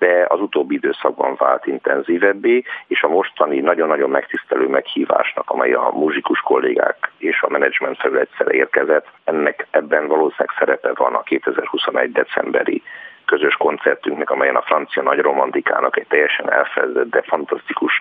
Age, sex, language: 50-69, male, Hungarian